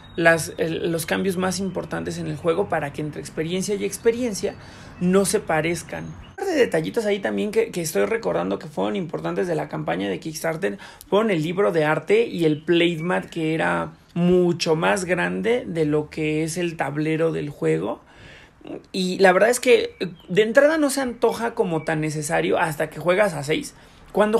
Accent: Mexican